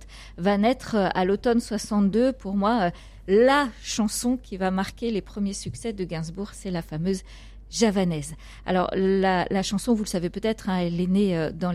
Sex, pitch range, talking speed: female, 185-230 Hz, 180 wpm